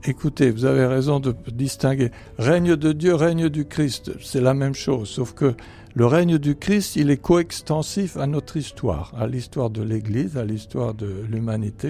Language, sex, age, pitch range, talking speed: French, male, 60-79, 110-155 Hz, 180 wpm